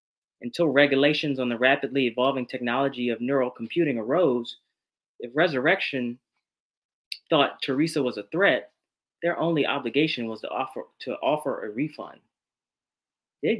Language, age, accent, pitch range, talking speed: English, 30-49, American, 125-170 Hz, 130 wpm